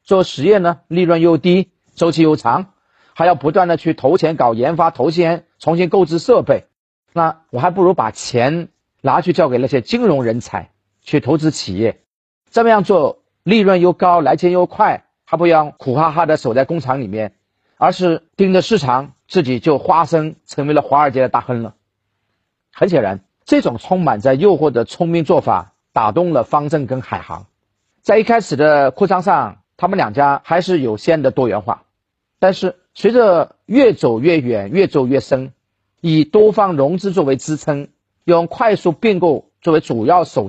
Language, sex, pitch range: Chinese, male, 125-180 Hz